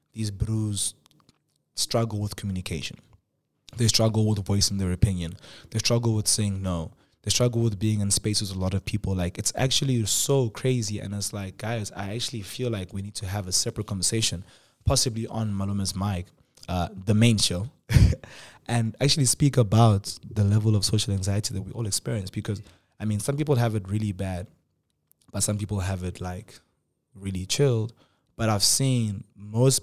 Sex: male